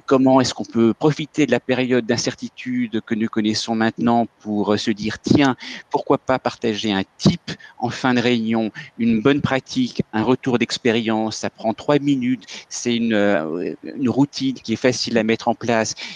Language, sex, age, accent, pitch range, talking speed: French, male, 50-69, French, 115-145 Hz, 175 wpm